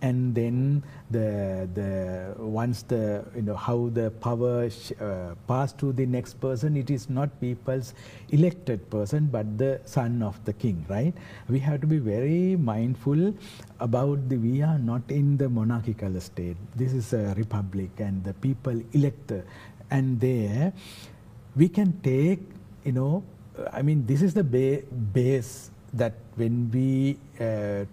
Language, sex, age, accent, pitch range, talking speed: English, male, 60-79, Indian, 110-135 Hz, 155 wpm